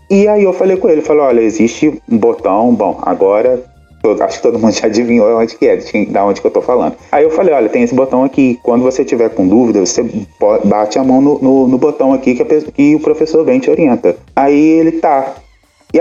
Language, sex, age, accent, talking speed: Portuguese, male, 30-49, Brazilian, 245 wpm